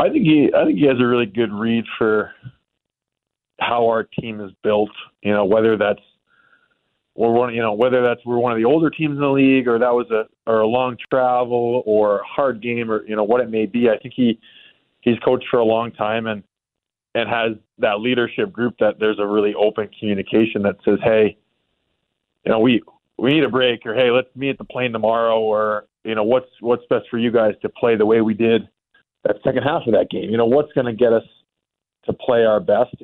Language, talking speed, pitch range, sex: English, 230 wpm, 110-125 Hz, male